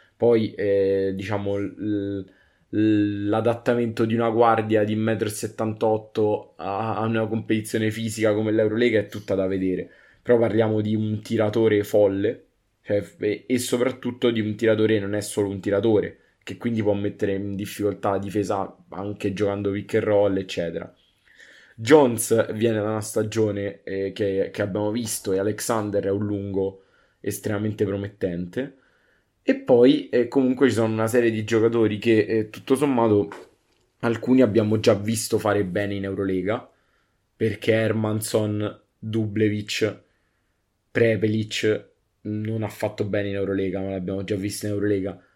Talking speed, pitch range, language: 140 wpm, 100-115 Hz, Italian